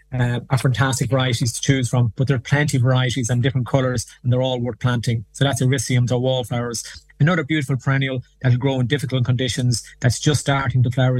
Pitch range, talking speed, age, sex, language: 125-140 Hz, 220 wpm, 20-39, male, English